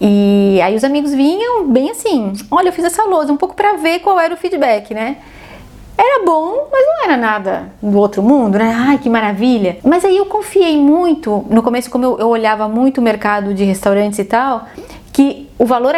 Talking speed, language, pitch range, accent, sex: 205 wpm, Portuguese, 225-300 Hz, Brazilian, female